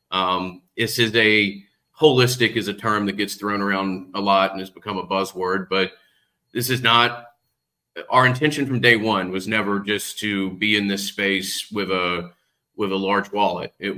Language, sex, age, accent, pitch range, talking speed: English, male, 30-49, American, 95-105 Hz, 185 wpm